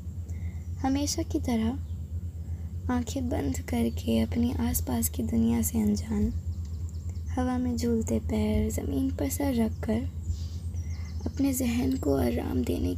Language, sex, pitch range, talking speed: Hindi, female, 85-95 Hz, 120 wpm